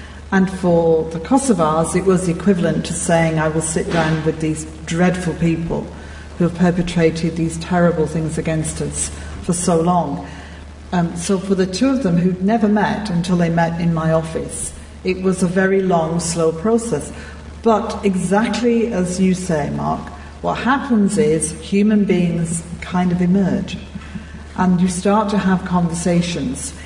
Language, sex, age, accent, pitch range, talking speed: English, female, 50-69, British, 160-195 Hz, 160 wpm